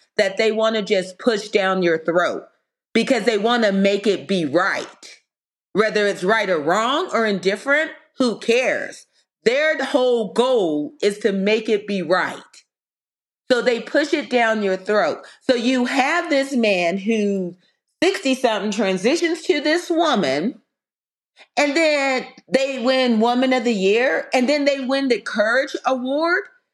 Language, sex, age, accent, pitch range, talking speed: English, female, 40-59, American, 215-295 Hz, 155 wpm